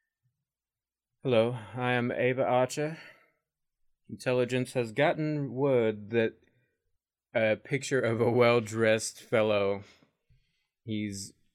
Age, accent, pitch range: 20-39, American, 100-120 Hz